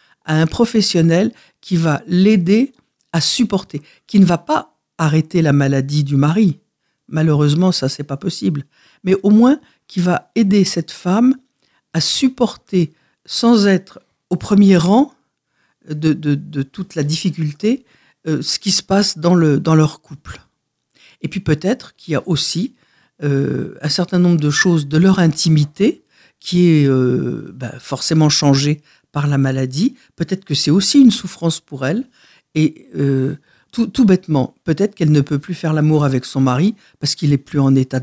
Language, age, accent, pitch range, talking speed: French, 60-79, French, 150-195 Hz, 170 wpm